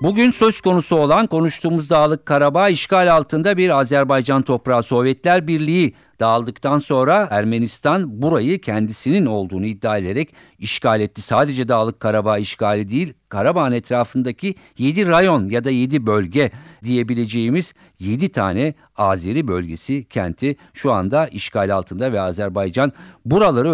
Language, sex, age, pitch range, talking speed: Turkish, male, 50-69, 115-160 Hz, 125 wpm